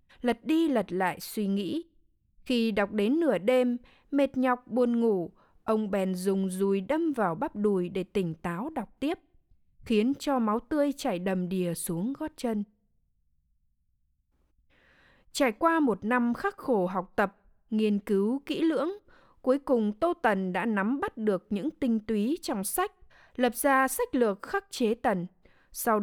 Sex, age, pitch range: female, 20-39, 195-265 Hz